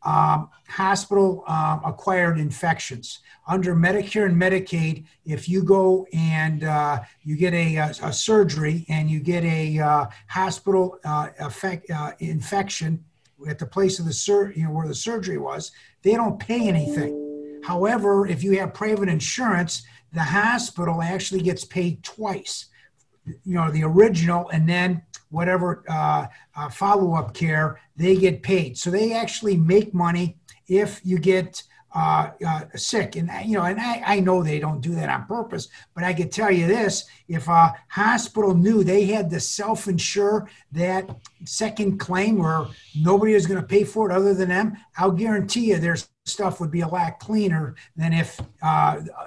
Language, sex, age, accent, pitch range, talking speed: English, male, 50-69, American, 160-200 Hz, 165 wpm